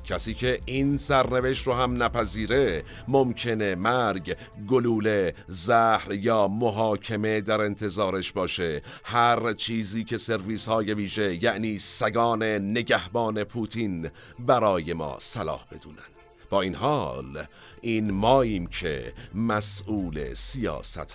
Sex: male